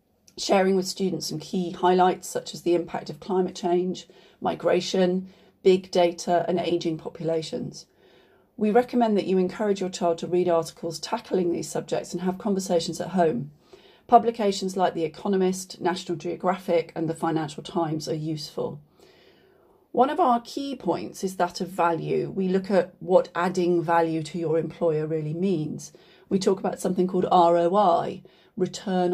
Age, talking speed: 40-59, 155 wpm